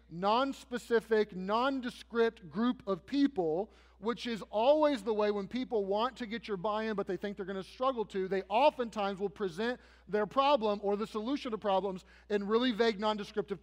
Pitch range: 200-245 Hz